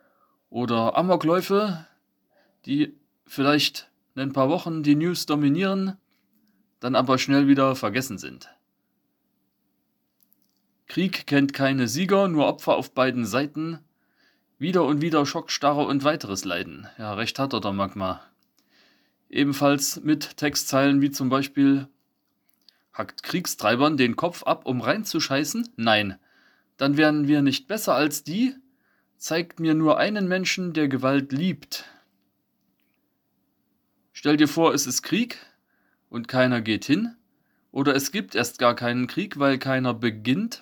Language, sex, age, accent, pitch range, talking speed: German, male, 30-49, German, 125-165 Hz, 130 wpm